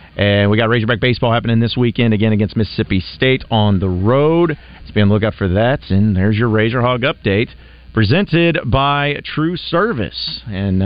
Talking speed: 180 wpm